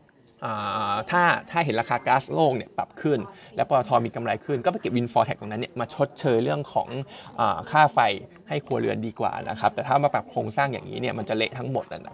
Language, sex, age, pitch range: Thai, male, 20-39, 115-145 Hz